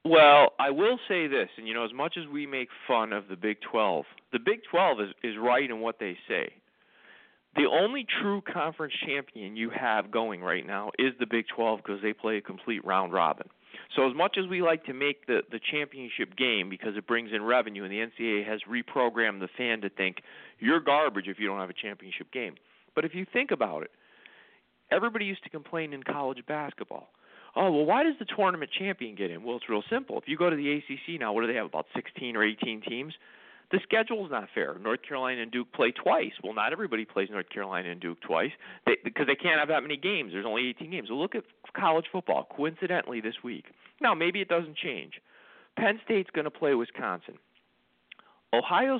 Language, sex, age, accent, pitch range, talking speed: English, male, 40-59, American, 110-175 Hz, 215 wpm